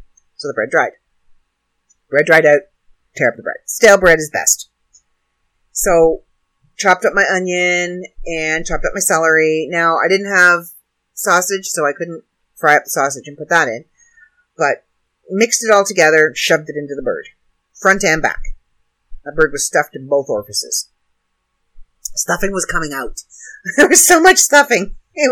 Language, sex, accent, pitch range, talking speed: English, female, American, 120-195 Hz, 170 wpm